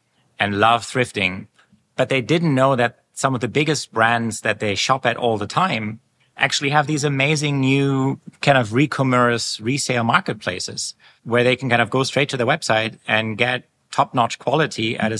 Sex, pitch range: male, 110-135 Hz